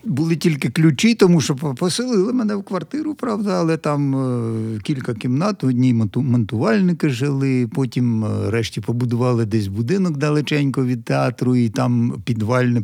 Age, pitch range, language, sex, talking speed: 60-79, 110-140 Hz, Ukrainian, male, 140 wpm